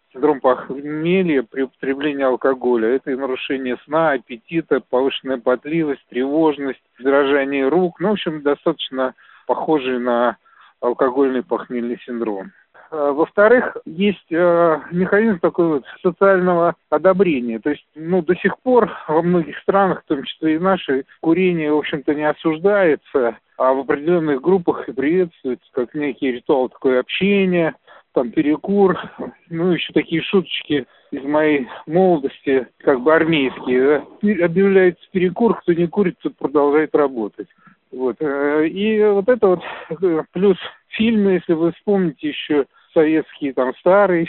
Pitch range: 135-180 Hz